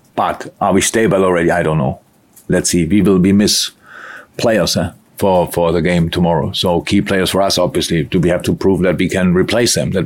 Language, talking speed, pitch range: English, 225 wpm, 90-105 Hz